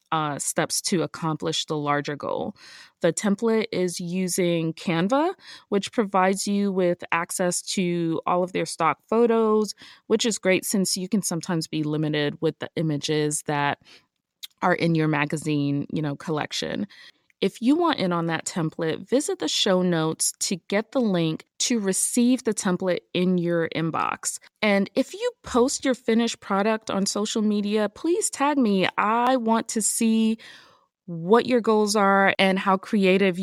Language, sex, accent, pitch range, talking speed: English, female, American, 165-220 Hz, 160 wpm